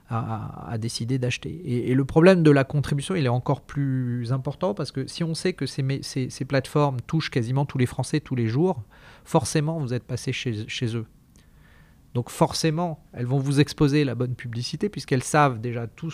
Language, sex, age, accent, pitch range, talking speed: French, male, 30-49, French, 125-155 Hz, 200 wpm